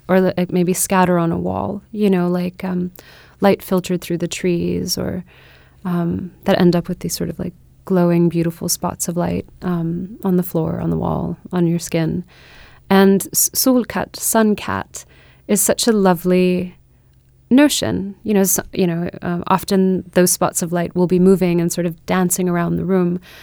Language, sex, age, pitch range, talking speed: English, female, 20-39, 170-190 Hz, 180 wpm